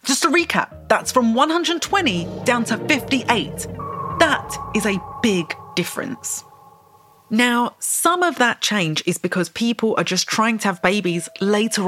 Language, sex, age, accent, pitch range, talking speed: English, female, 30-49, British, 175-255 Hz, 145 wpm